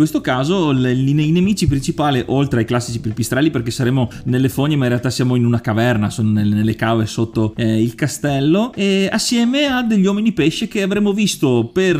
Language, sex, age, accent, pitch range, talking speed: Italian, male, 30-49, native, 125-180 Hz, 200 wpm